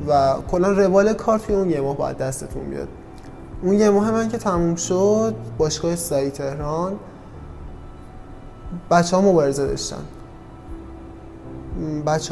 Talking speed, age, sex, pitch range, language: 110 wpm, 20-39, male, 130-175 Hz, Persian